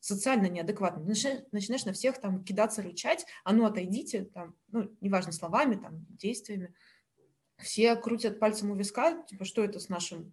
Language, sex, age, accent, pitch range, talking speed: Russian, female, 20-39, native, 190-230 Hz, 165 wpm